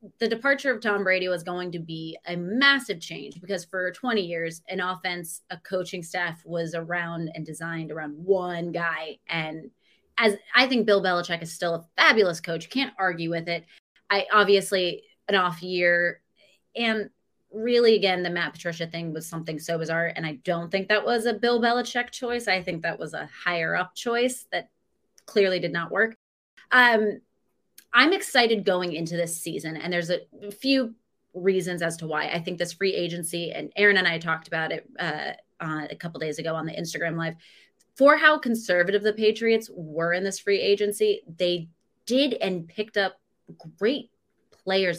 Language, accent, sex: English, American, female